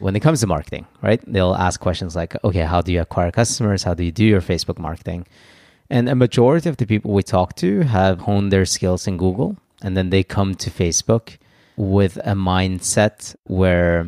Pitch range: 90-105 Hz